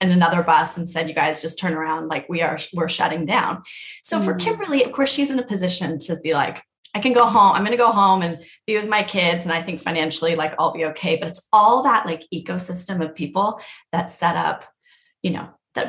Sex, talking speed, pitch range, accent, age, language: female, 240 wpm, 165-195 Hz, American, 20-39, English